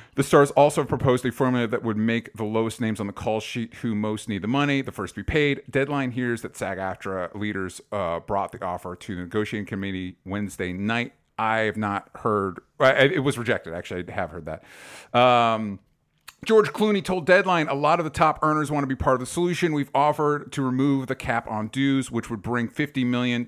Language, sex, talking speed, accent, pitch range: English, male, 220 wpm, American, 100-130 Hz